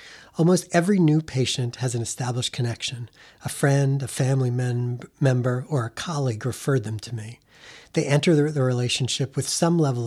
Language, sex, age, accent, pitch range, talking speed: English, male, 40-59, American, 120-155 Hz, 165 wpm